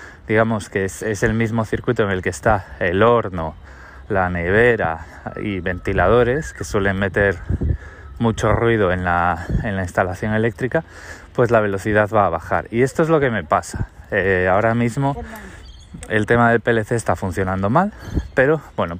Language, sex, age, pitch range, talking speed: Spanish, male, 20-39, 90-115 Hz, 165 wpm